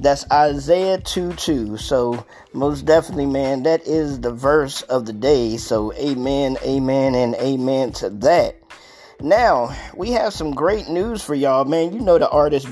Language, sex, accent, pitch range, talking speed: English, male, American, 145-185 Hz, 160 wpm